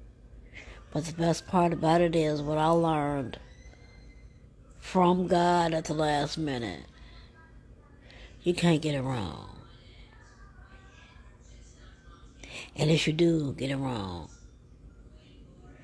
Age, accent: 60-79, American